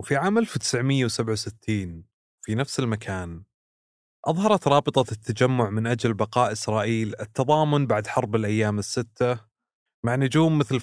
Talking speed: 115 wpm